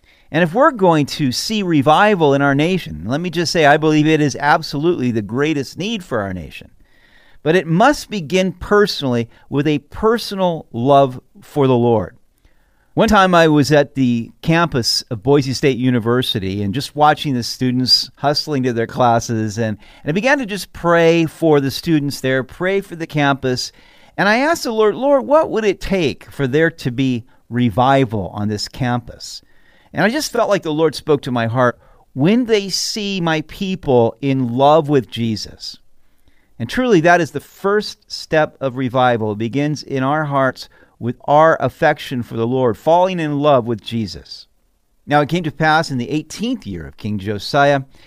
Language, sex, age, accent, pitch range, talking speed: English, male, 40-59, American, 120-170 Hz, 185 wpm